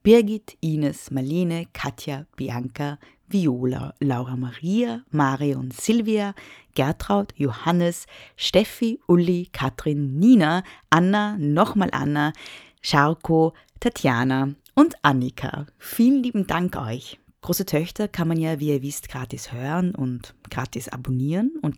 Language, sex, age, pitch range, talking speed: German, female, 20-39, 135-190 Hz, 115 wpm